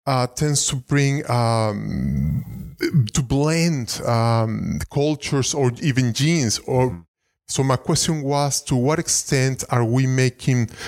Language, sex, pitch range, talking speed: English, male, 115-140 Hz, 125 wpm